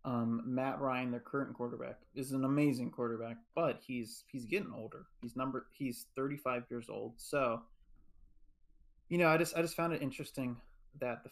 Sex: male